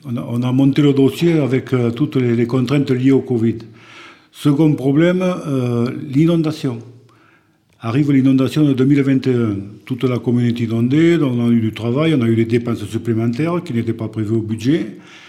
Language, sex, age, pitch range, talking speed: French, male, 50-69, 110-135 Hz, 175 wpm